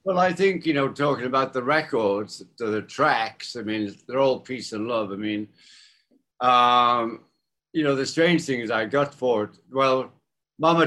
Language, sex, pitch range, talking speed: English, male, 110-145 Hz, 180 wpm